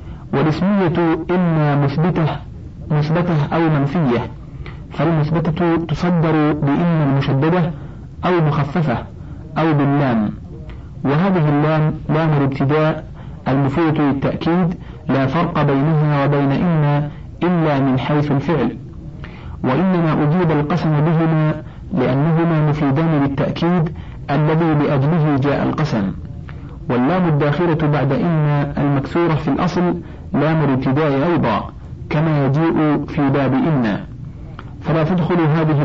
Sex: male